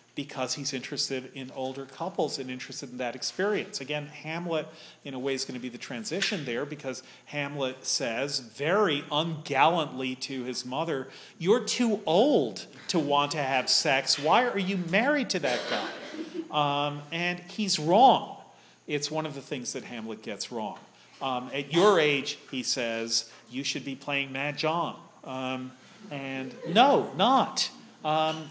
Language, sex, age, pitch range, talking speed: English, male, 40-59, 130-170 Hz, 160 wpm